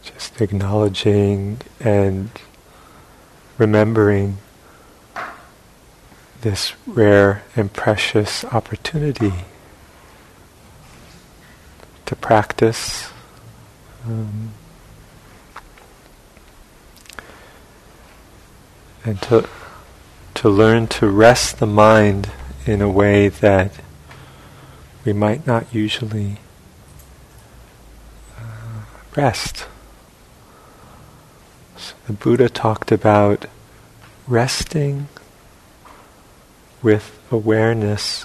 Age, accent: 40-59, American